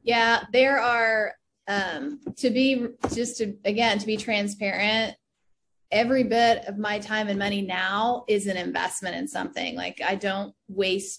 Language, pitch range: English, 185-215 Hz